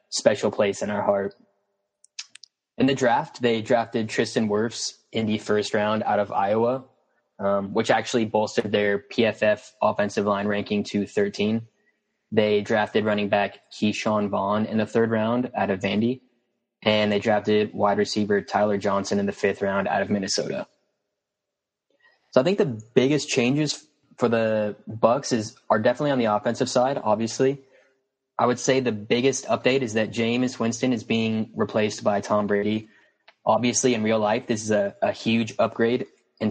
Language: English